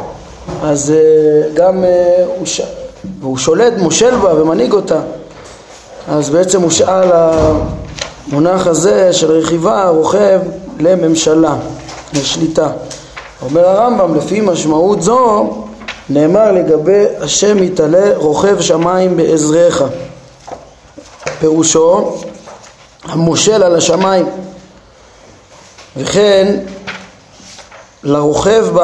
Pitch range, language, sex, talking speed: 155-195 Hz, Hebrew, male, 80 wpm